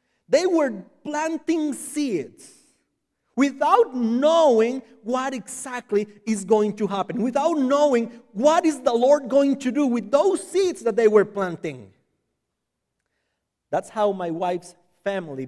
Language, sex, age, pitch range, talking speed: English, male, 40-59, 175-260 Hz, 130 wpm